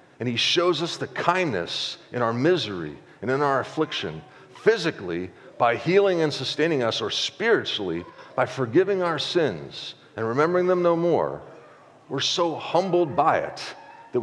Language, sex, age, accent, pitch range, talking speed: English, male, 40-59, American, 120-170 Hz, 150 wpm